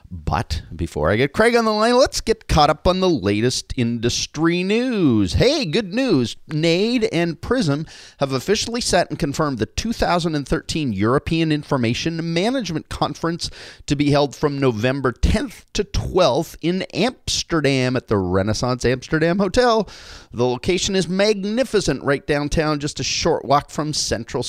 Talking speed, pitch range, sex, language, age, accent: 150 wpm, 120-180 Hz, male, English, 30-49, American